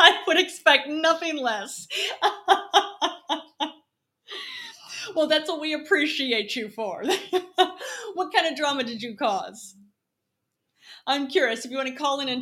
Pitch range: 200-275 Hz